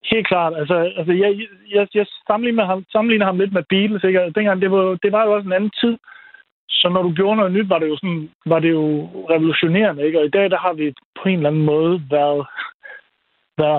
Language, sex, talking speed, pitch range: Danish, male, 230 wpm, 155-185 Hz